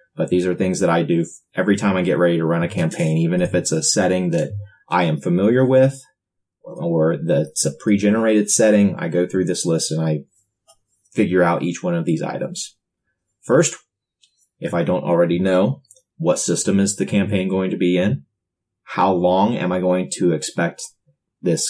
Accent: American